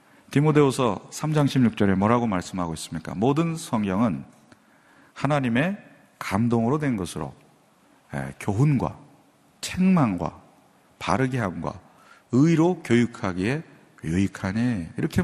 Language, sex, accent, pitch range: Korean, male, native, 105-145 Hz